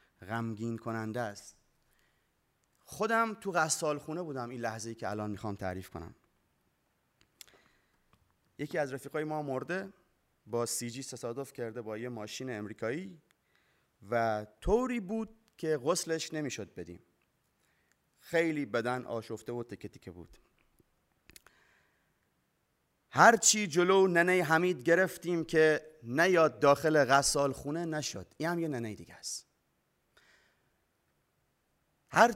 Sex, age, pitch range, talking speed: male, 30-49, 120-175 Hz, 110 wpm